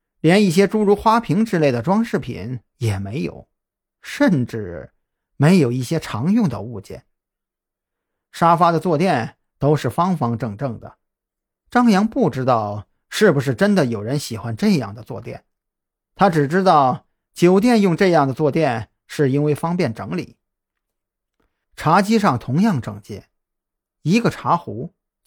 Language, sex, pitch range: Chinese, male, 115-180 Hz